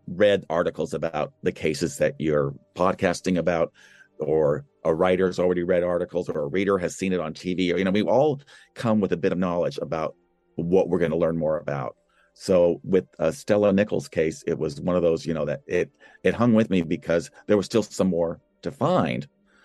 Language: English